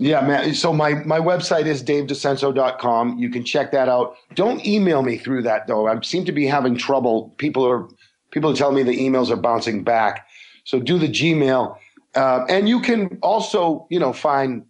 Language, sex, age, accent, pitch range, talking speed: English, male, 40-59, American, 130-180 Hz, 195 wpm